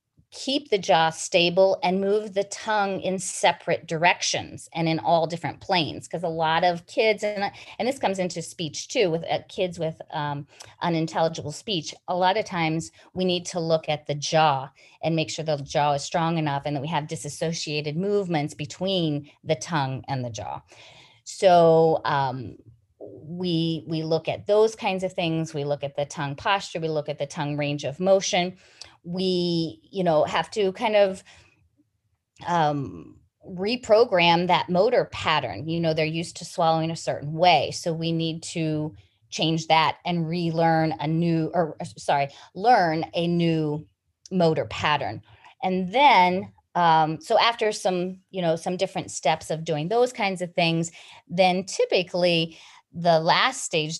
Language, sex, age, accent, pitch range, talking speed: English, female, 30-49, American, 150-180 Hz, 165 wpm